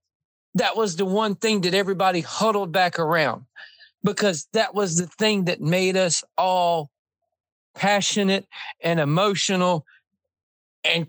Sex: male